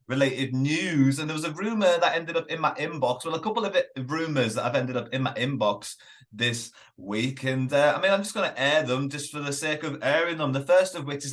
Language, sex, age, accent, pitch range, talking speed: English, male, 30-49, British, 130-165 Hz, 260 wpm